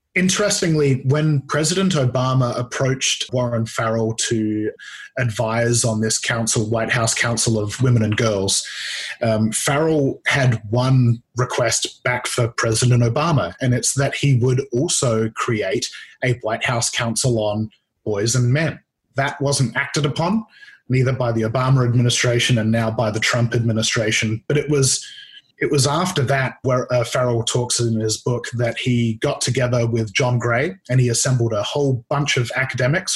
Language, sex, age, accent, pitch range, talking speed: English, male, 20-39, Australian, 115-140 Hz, 155 wpm